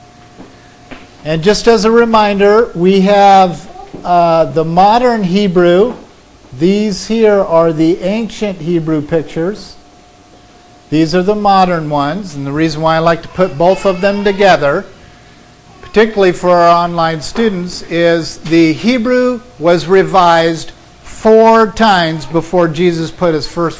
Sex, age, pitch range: male, 50-69, 155-200 Hz